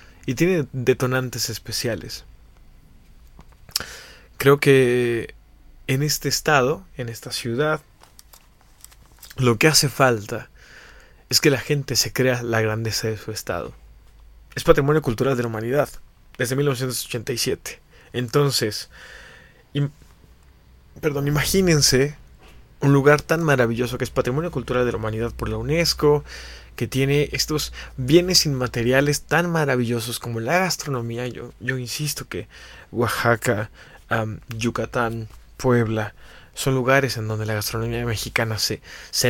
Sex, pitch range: male, 110-140 Hz